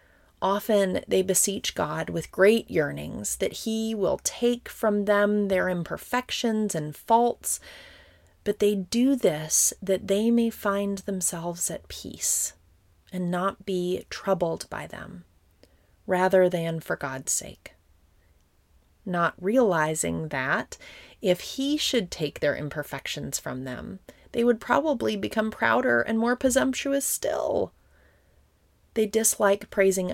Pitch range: 135-205 Hz